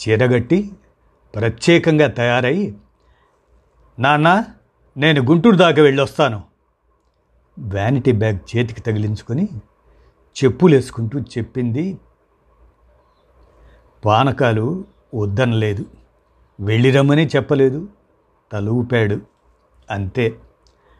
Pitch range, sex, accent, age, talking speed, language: 110-165 Hz, male, native, 60-79, 60 wpm, Telugu